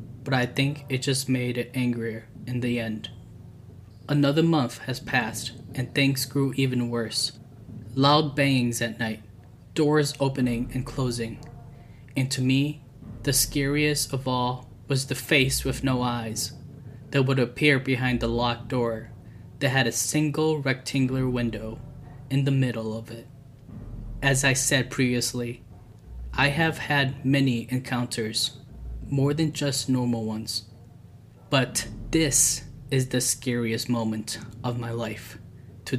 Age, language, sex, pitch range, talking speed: 10-29, English, male, 115-135 Hz, 140 wpm